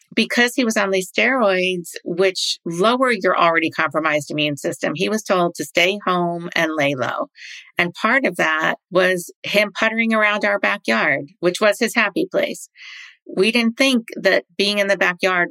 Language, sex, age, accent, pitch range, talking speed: English, female, 50-69, American, 165-205 Hz, 175 wpm